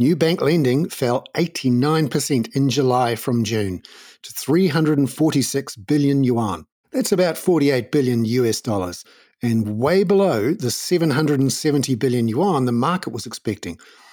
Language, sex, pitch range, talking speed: English, male, 120-160 Hz, 125 wpm